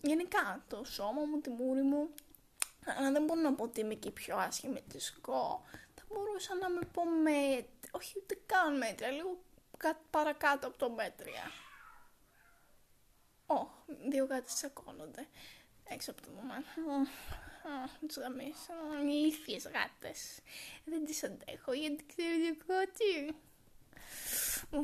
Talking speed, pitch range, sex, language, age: 130 wpm, 255-310 Hz, female, Greek, 20-39